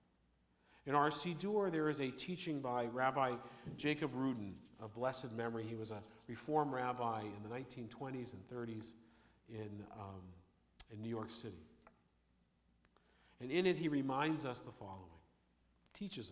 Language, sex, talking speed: English, male, 145 wpm